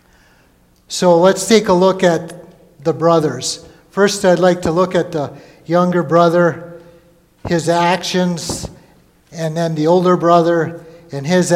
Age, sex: 50-69, male